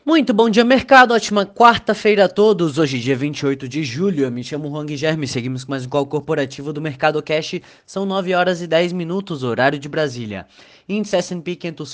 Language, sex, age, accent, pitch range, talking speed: Portuguese, male, 20-39, Brazilian, 135-165 Hz, 200 wpm